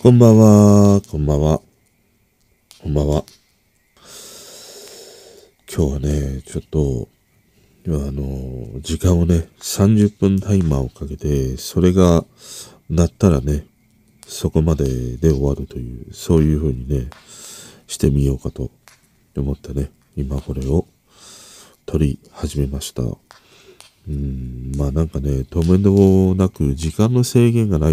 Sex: male